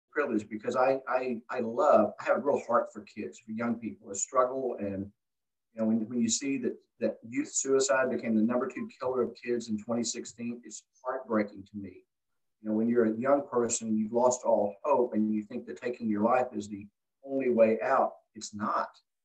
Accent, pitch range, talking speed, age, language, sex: American, 110-150 Hz, 210 wpm, 50-69, English, male